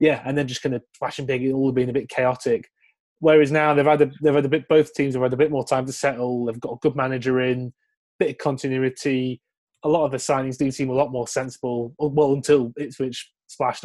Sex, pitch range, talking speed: male, 125-150 Hz, 255 wpm